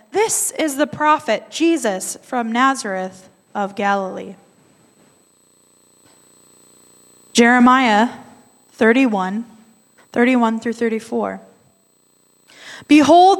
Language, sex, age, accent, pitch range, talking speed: English, female, 20-39, American, 210-265 Hz, 65 wpm